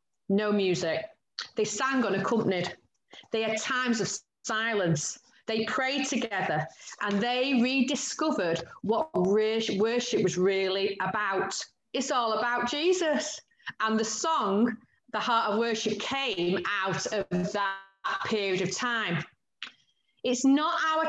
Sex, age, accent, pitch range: female, 30-49, British, 195-260 Hz